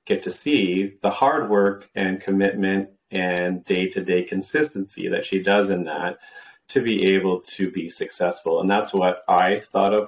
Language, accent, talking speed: English, American, 165 wpm